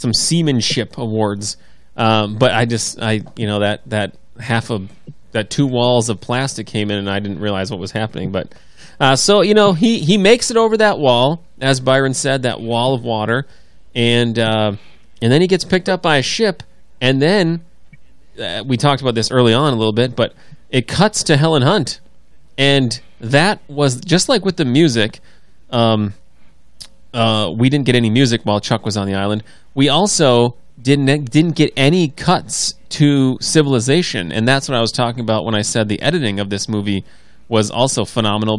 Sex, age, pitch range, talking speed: male, 30-49, 110-140 Hz, 195 wpm